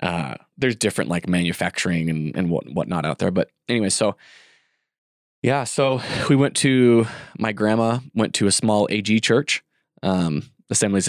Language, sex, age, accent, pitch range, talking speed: English, male, 20-39, American, 90-115 Hz, 150 wpm